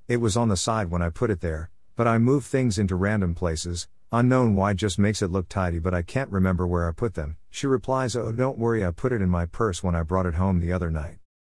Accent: American